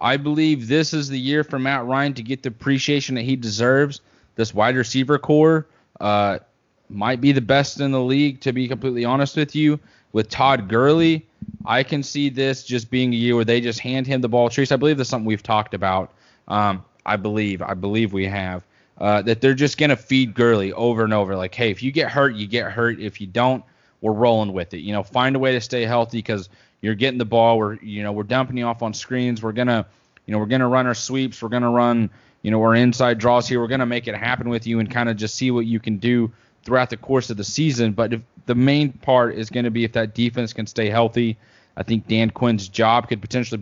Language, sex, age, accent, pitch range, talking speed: English, male, 20-39, American, 110-130 Hz, 250 wpm